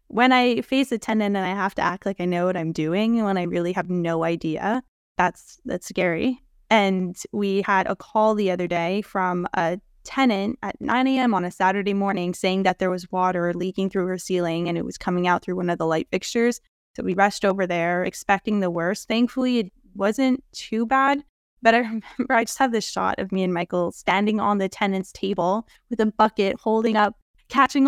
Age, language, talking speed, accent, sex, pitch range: 10-29, English, 215 wpm, American, female, 180-230 Hz